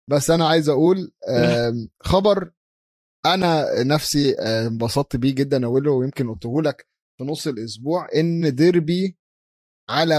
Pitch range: 130-170 Hz